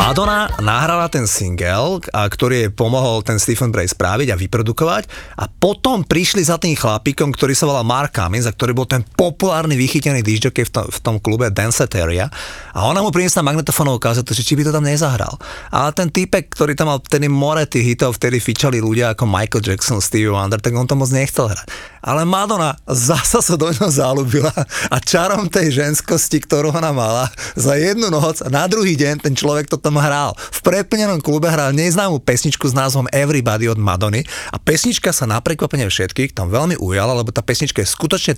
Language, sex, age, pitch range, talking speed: Slovak, male, 30-49, 115-160 Hz, 195 wpm